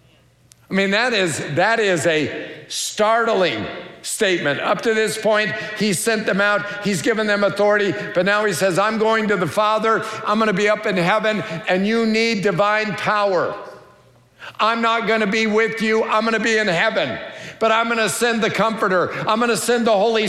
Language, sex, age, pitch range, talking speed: English, male, 50-69, 205-235 Hz, 185 wpm